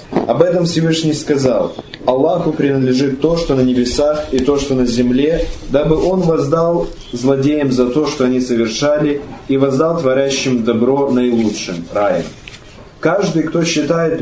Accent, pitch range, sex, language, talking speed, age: native, 130-165 Hz, male, Russian, 140 wpm, 20-39